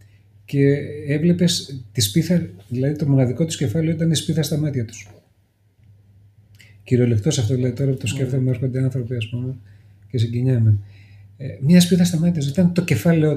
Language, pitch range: Greek, 110-145 Hz